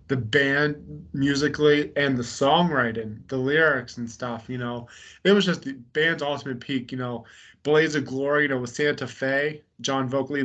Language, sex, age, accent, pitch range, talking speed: English, male, 30-49, American, 125-145 Hz, 180 wpm